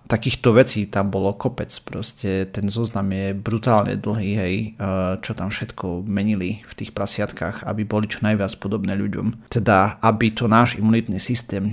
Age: 30-49